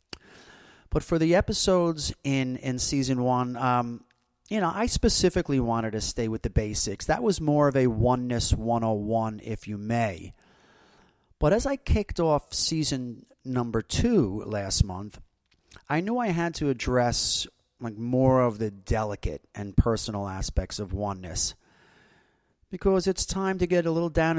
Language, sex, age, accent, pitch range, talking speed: English, male, 30-49, American, 110-160 Hz, 155 wpm